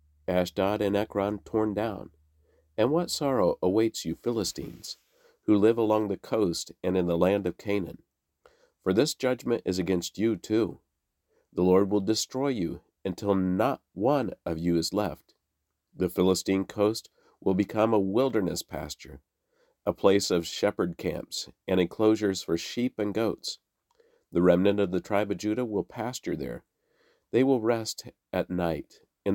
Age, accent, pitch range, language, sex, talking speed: 50-69, American, 90-110 Hz, English, male, 155 wpm